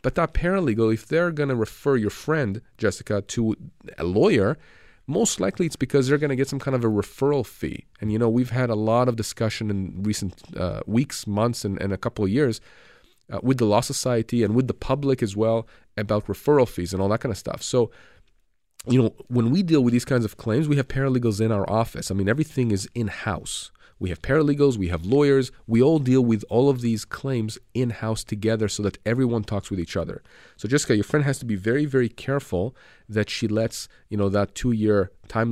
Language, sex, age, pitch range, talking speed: English, male, 30-49, 105-135 Hz, 220 wpm